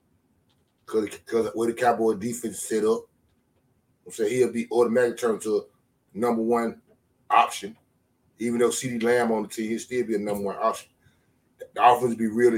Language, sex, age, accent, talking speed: English, male, 30-49, American, 175 wpm